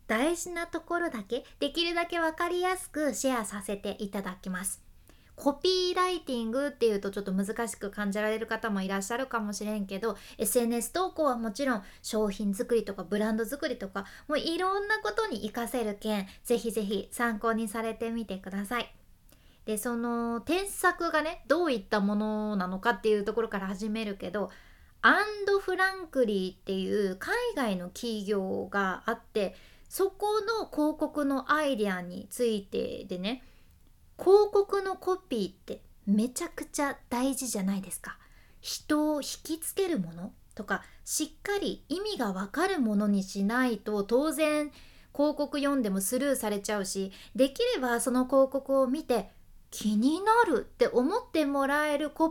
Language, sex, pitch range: Japanese, female, 210-310 Hz